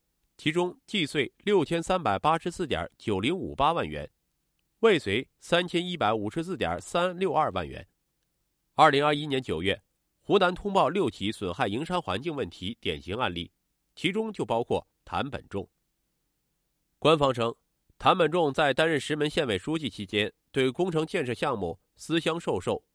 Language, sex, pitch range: Chinese, male, 125-170 Hz